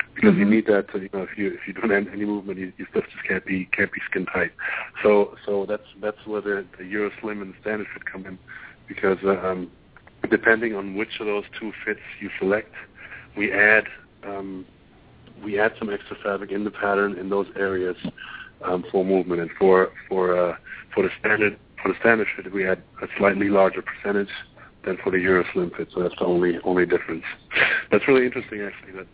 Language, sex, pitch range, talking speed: English, male, 95-105 Hz, 210 wpm